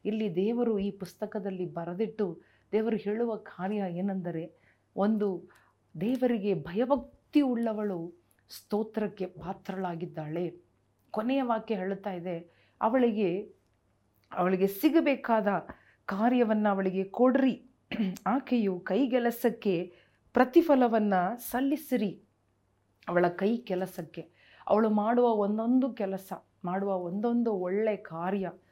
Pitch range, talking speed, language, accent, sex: 180-225 Hz, 85 wpm, Kannada, native, female